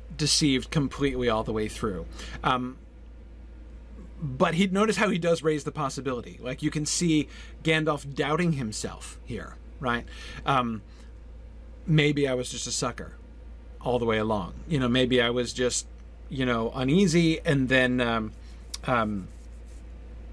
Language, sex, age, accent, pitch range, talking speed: English, male, 40-59, American, 100-150 Hz, 140 wpm